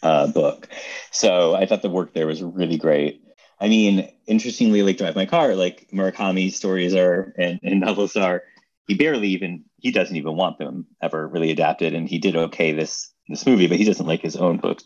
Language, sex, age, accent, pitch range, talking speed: English, male, 30-49, American, 85-110 Hz, 205 wpm